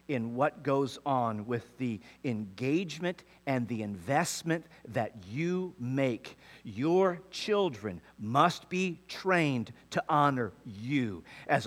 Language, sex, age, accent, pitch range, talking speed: English, male, 50-69, American, 115-185 Hz, 115 wpm